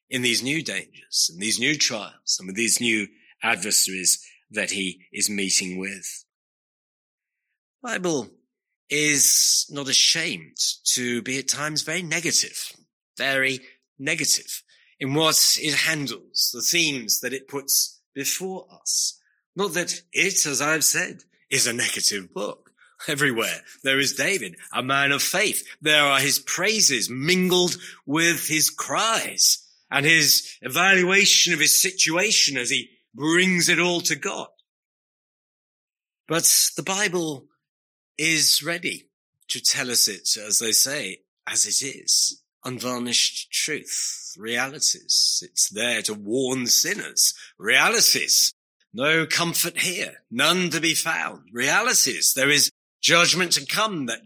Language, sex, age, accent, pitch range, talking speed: English, male, 30-49, British, 130-170 Hz, 135 wpm